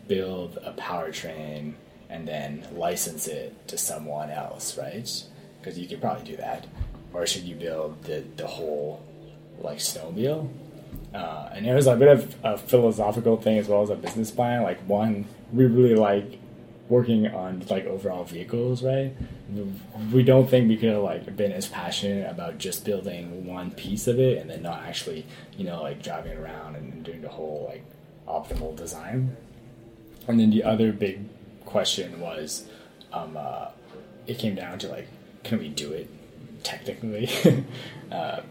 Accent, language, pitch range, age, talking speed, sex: American, English, 85-120 Hz, 20-39, 165 wpm, male